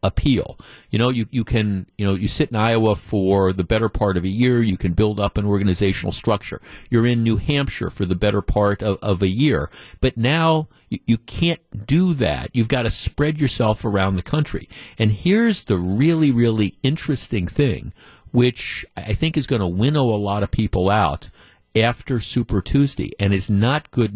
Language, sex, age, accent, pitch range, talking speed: English, male, 50-69, American, 100-130 Hz, 195 wpm